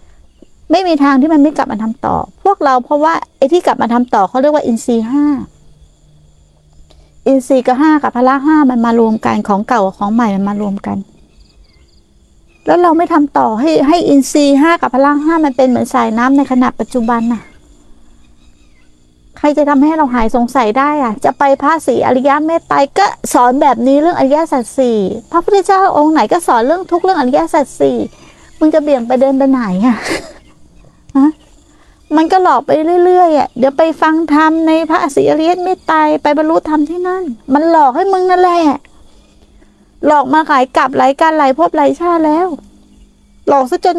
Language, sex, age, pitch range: Thai, female, 60-79, 220-320 Hz